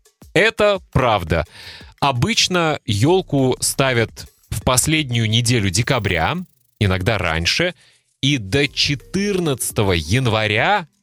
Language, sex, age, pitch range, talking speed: Russian, male, 30-49, 100-145 Hz, 80 wpm